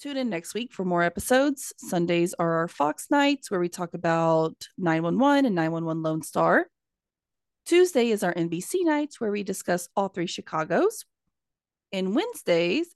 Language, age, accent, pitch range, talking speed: English, 30-49, American, 170-240 Hz, 155 wpm